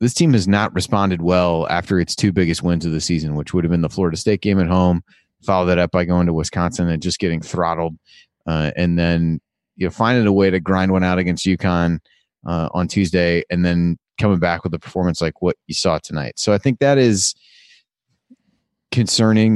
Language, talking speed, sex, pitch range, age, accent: English, 210 wpm, male, 85-100 Hz, 30-49, American